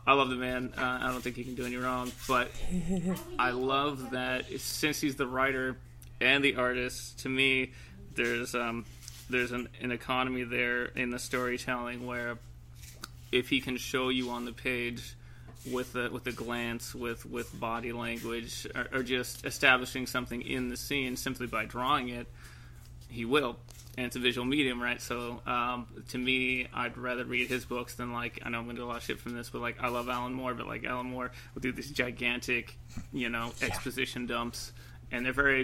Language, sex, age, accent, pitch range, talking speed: English, male, 20-39, American, 120-130 Hz, 195 wpm